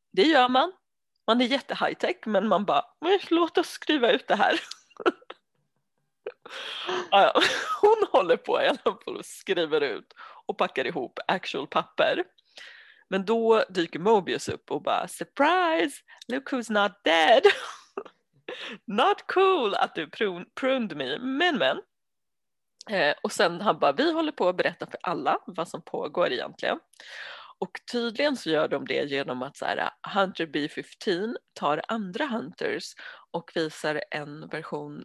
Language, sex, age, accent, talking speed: Swedish, female, 30-49, native, 140 wpm